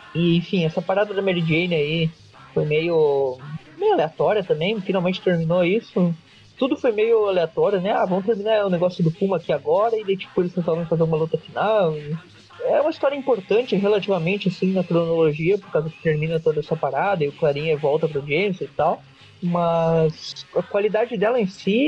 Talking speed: 185 wpm